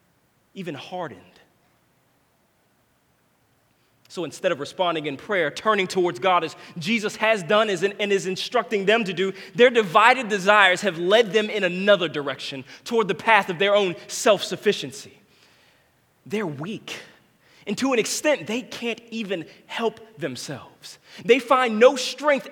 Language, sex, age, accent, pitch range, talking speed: English, male, 20-39, American, 170-225 Hz, 140 wpm